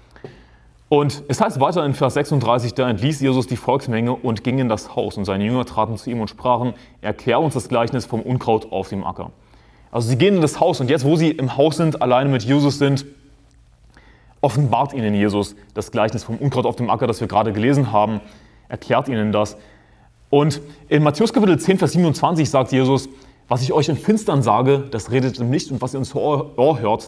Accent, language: German, German